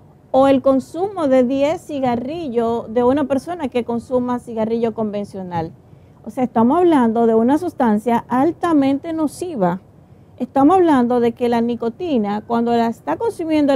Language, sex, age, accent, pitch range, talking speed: Spanish, female, 40-59, American, 235-285 Hz, 140 wpm